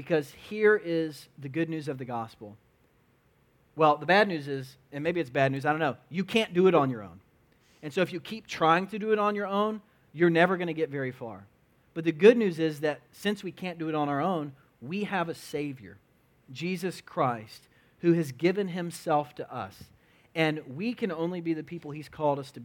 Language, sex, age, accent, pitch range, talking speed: English, male, 40-59, American, 135-175 Hz, 225 wpm